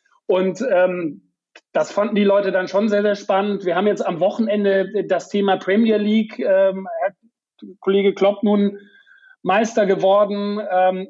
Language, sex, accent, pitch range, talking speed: German, male, German, 185-215 Hz, 150 wpm